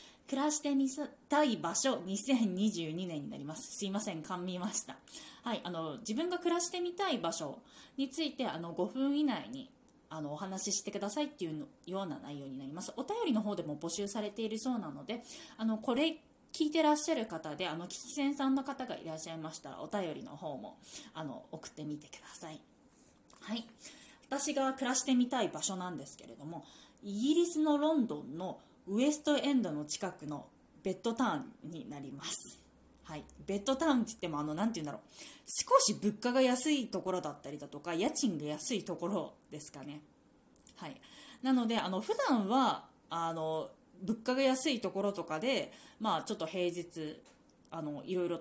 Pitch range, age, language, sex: 175-275 Hz, 20-39, Japanese, female